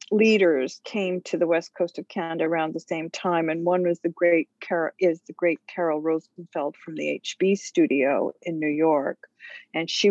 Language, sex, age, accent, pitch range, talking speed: English, female, 50-69, American, 160-190 Hz, 190 wpm